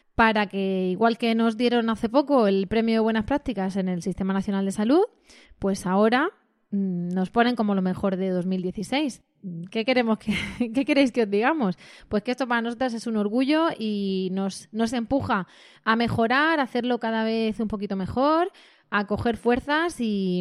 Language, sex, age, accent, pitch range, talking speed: Spanish, female, 20-39, Spanish, 200-250 Hz, 180 wpm